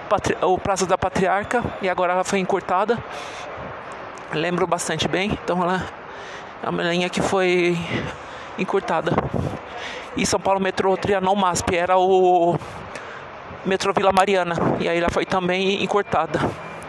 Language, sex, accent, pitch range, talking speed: Portuguese, male, Brazilian, 180-205 Hz, 130 wpm